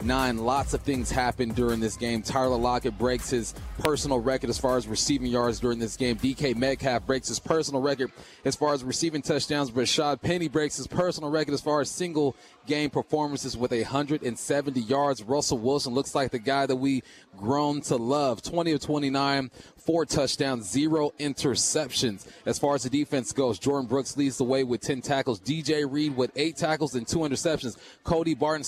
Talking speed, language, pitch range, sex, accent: 190 wpm, English, 125-150 Hz, male, American